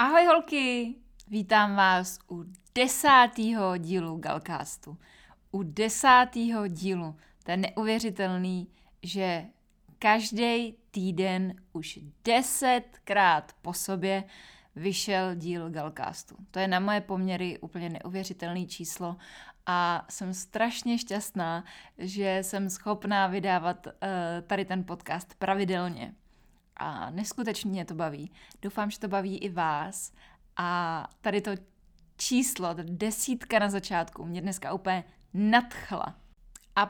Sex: female